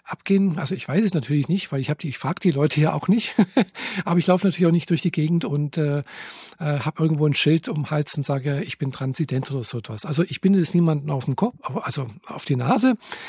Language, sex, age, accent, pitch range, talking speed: German, male, 50-69, German, 145-175 Hz, 255 wpm